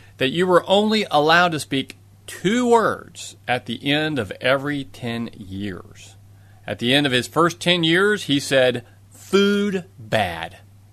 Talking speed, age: 155 wpm, 30-49